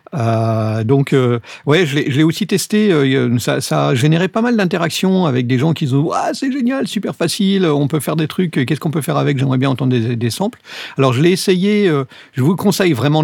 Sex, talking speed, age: male, 225 wpm, 50-69